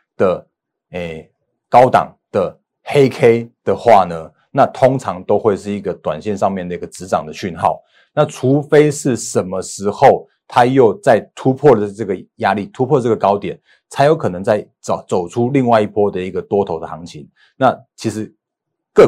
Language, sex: Chinese, male